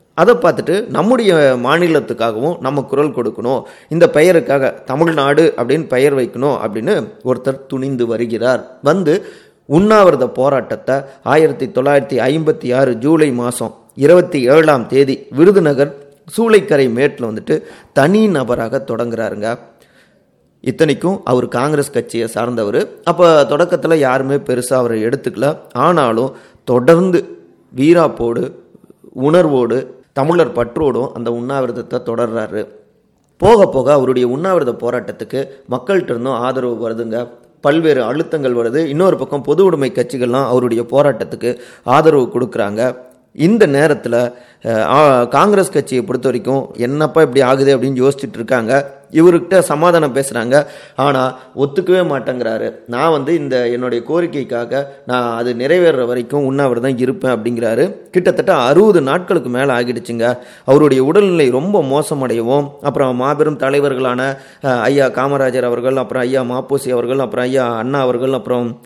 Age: 30-49